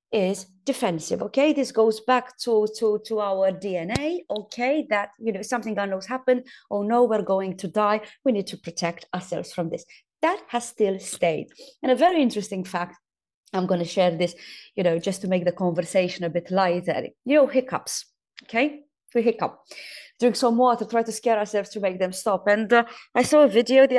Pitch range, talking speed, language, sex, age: 185-240 Hz, 200 wpm, English, female, 30-49